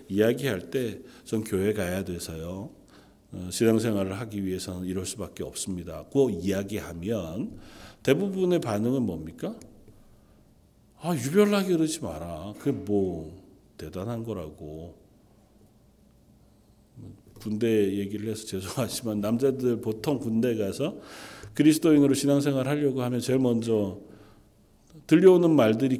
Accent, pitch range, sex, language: native, 100-135 Hz, male, Korean